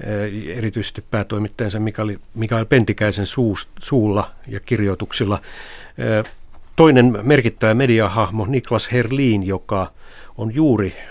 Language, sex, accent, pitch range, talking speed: Finnish, male, native, 100-120 Hz, 80 wpm